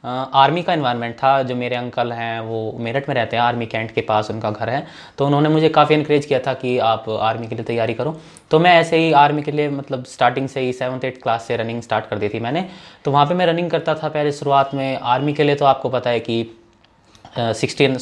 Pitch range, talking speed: 120-155 Hz, 255 wpm